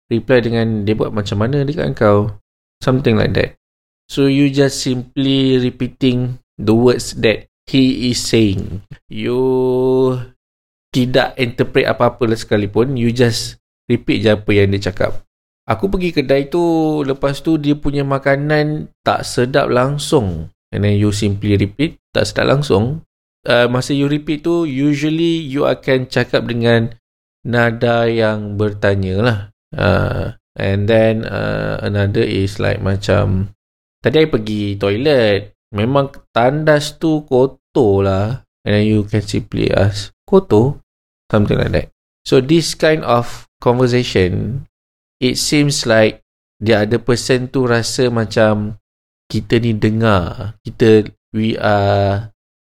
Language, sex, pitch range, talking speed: Malay, male, 105-130 Hz, 130 wpm